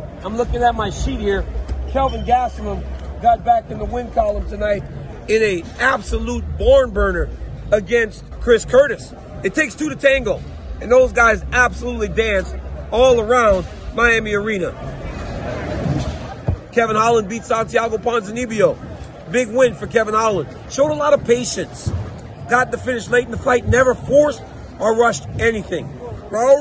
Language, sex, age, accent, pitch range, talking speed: English, male, 40-59, American, 210-260 Hz, 145 wpm